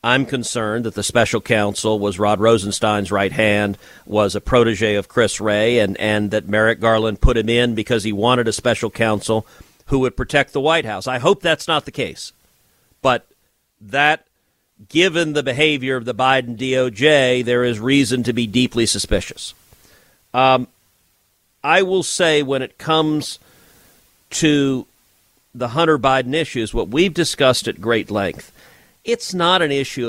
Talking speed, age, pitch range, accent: 160 wpm, 50-69, 110-150 Hz, American